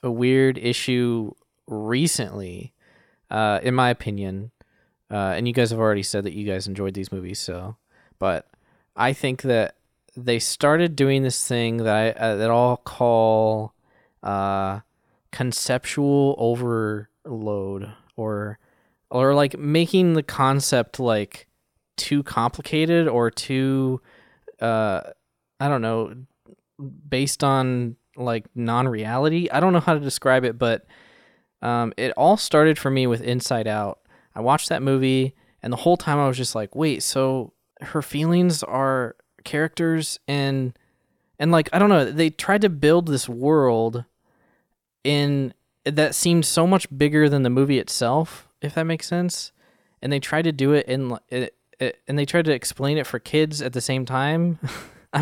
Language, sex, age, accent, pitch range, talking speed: English, male, 20-39, American, 115-150 Hz, 155 wpm